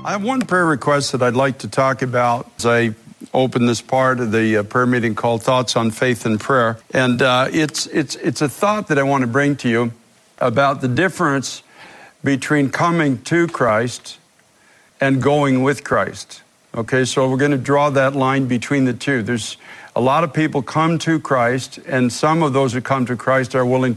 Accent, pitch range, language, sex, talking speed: American, 125-150 Hz, English, male, 200 wpm